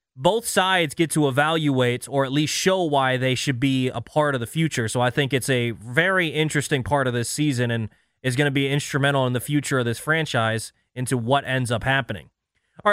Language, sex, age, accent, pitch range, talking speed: English, male, 20-39, American, 130-175 Hz, 220 wpm